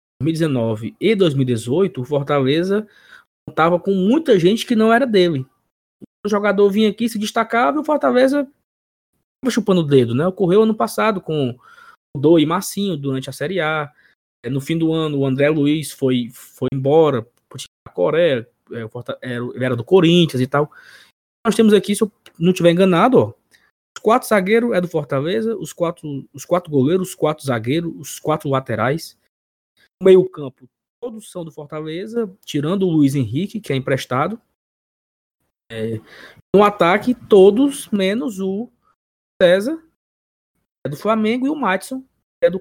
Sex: male